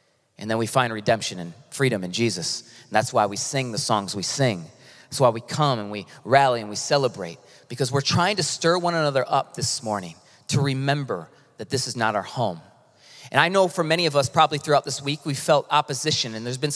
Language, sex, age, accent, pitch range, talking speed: English, male, 30-49, American, 125-160 Hz, 225 wpm